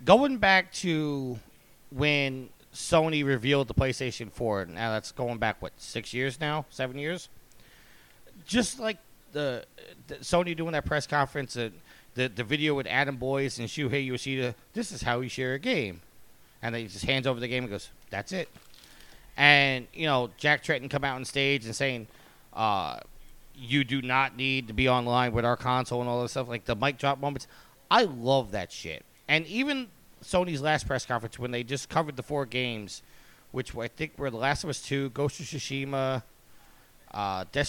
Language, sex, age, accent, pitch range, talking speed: English, male, 30-49, American, 120-145 Hz, 190 wpm